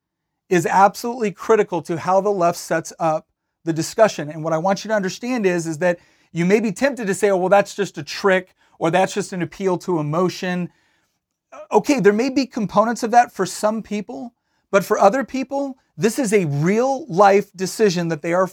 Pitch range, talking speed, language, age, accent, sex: 170-215 Hz, 200 wpm, English, 40-59, American, male